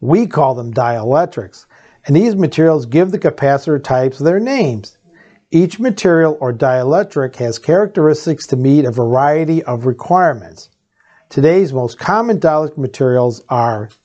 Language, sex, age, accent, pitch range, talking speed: English, male, 50-69, American, 130-175 Hz, 130 wpm